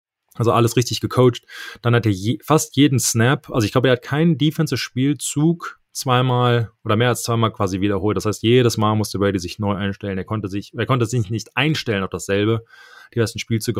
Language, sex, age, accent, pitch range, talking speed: German, male, 20-39, German, 105-125 Hz, 205 wpm